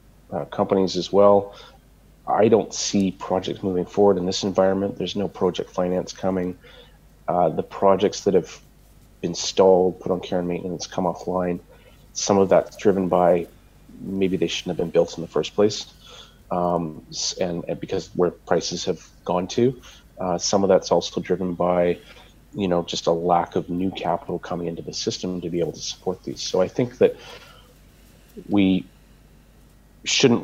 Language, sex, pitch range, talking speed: English, male, 90-100 Hz, 170 wpm